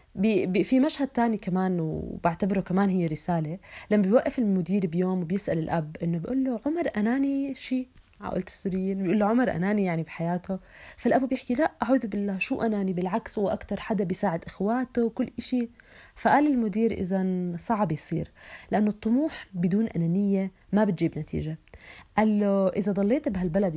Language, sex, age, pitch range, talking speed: Arabic, female, 30-49, 175-225 Hz, 150 wpm